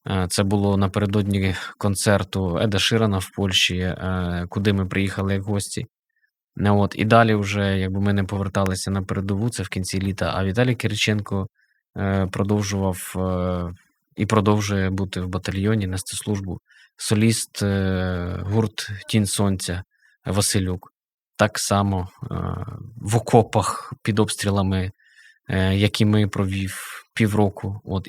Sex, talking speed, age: male, 110 wpm, 20-39